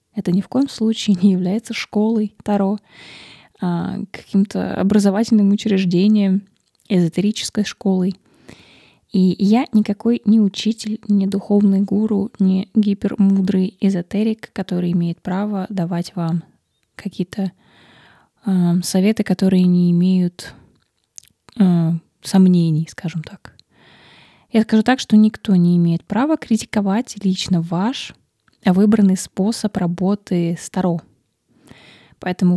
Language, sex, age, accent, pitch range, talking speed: Russian, female, 20-39, native, 185-215 Hz, 110 wpm